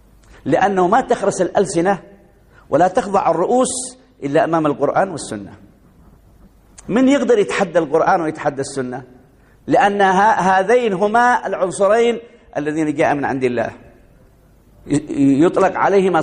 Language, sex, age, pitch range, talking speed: Arabic, male, 50-69, 155-225 Hz, 105 wpm